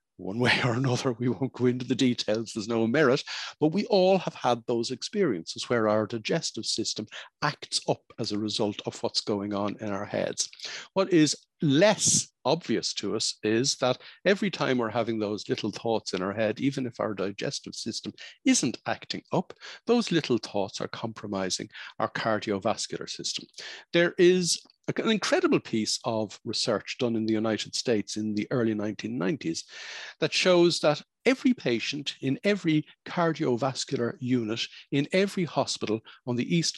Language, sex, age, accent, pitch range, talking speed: English, male, 60-79, Irish, 110-160 Hz, 165 wpm